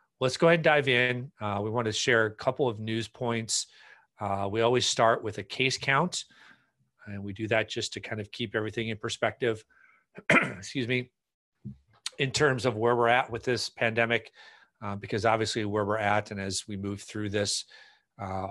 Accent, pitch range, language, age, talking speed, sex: American, 100-125 Hz, English, 40-59, 195 wpm, male